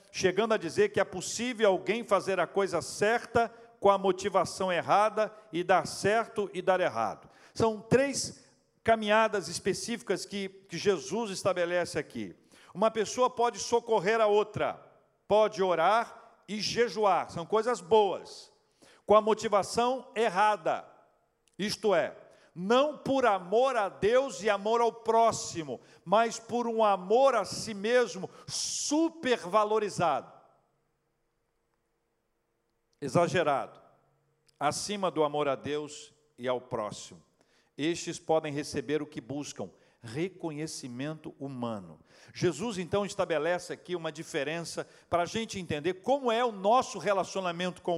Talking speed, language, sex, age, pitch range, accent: 125 wpm, Portuguese, male, 50-69, 165-225 Hz, Brazilian